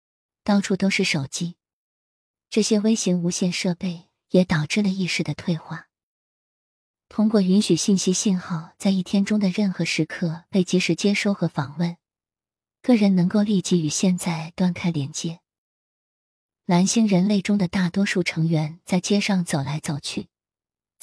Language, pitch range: Chinese, 160-200 Hz